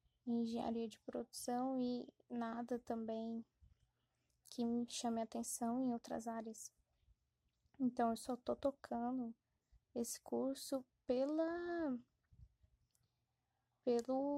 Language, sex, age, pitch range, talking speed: Portuguese, female, 10-29, 230-255 Hz, 100 wpm